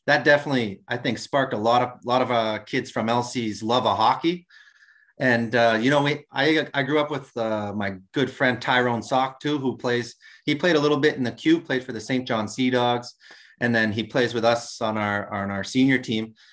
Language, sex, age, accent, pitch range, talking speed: English, male, 30-49, American, 115-145 Hz, 230 wpm